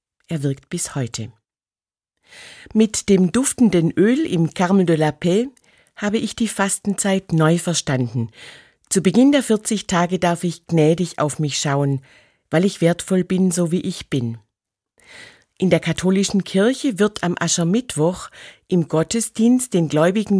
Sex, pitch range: female, 150-195 Hz